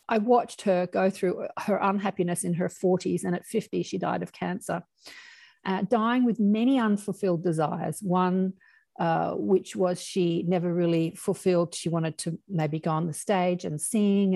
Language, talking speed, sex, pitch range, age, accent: English, 170 wpm, female, 170-210 Hz, 50-69, Australian